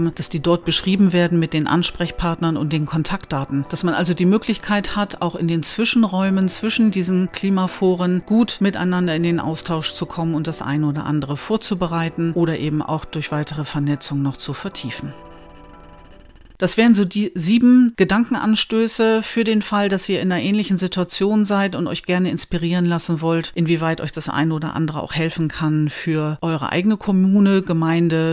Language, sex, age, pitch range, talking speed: German, female, 40-59, 155-190 Hz, 175 wpm